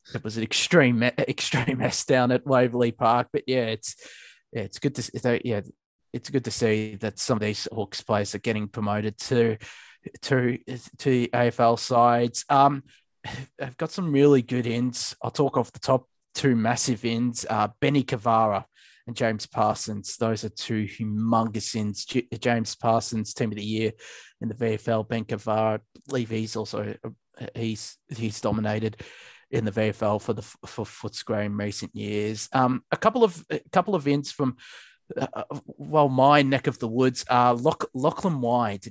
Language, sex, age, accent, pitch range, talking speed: English, male, 20-39, Australian, 110-130 Hz, 170 wpm